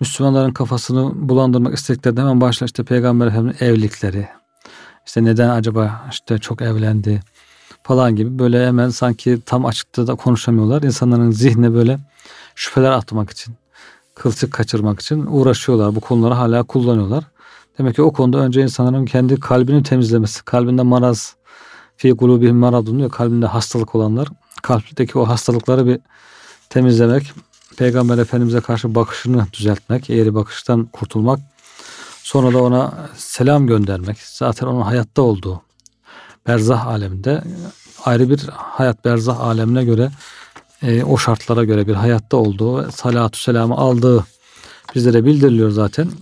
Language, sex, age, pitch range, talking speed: Turkish, male, 40-59, 115-130 Hz, 130 wpm